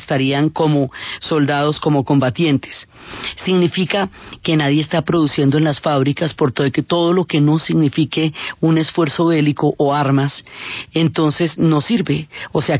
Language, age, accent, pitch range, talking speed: Spanish, 40-59, Colombian, 145-170 Hz, 140 wpm